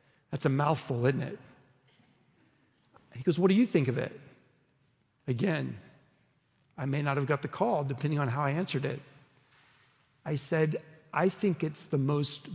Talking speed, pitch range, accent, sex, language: 165 wpm, 135-165 Hz, American, male, English